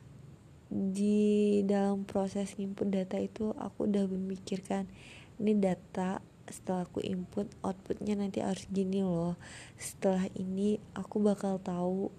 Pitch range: 185-205 Hz